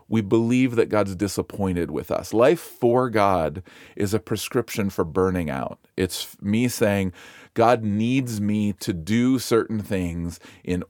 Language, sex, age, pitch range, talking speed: English, male, 40-59, 95-120 Hz, 150 wpm